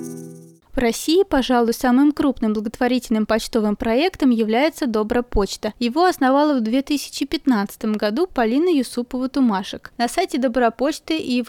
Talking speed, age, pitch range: 120 wpm, 20-39, 225-280 Hz